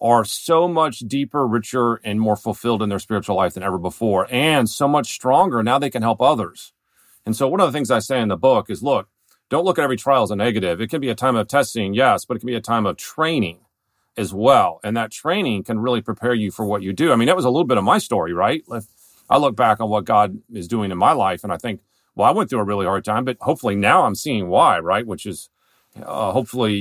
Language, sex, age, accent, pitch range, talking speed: English, male, 40-59, American, 100-130 Hz, 265 wpm